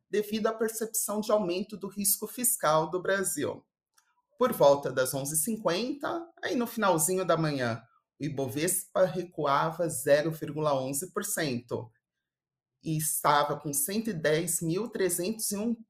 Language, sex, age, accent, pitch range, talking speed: Portuguese, male, 30-49, Brazilian, 155-225 Hz, 100 wpm